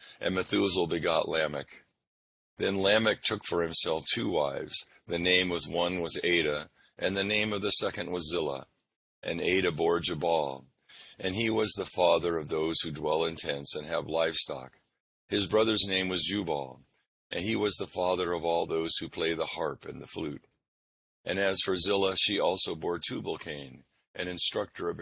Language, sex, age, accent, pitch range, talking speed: English, male, 50-69, American, 80-95 Hz, 175 wpm